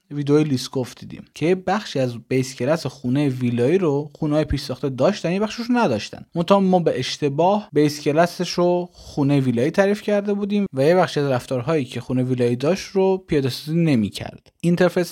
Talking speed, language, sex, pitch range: 185 wpm, Persian, male, 130-185 Hz